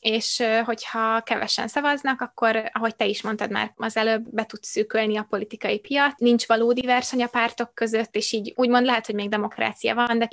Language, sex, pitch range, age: Hungarian, female, 215-245 Hz, 20-39